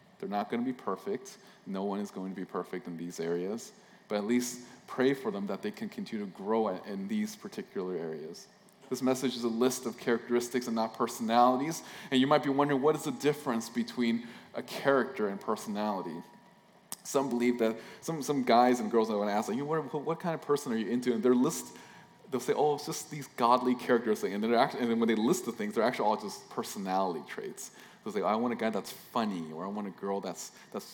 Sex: male